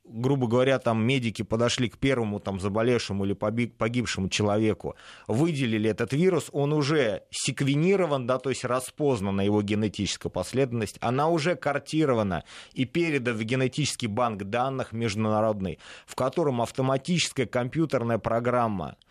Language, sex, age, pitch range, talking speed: Russian, male, 30-49, 105-135 Hz, 120 wpm